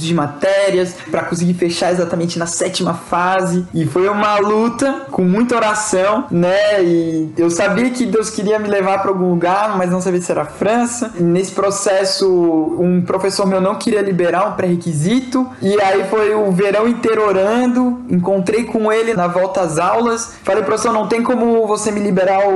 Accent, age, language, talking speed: Brazilian, 20-39, Portuguese, 185 wpm